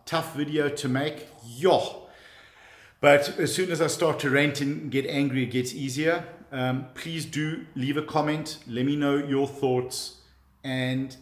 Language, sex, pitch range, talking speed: English, male, 115-135 Hz, 165 wpm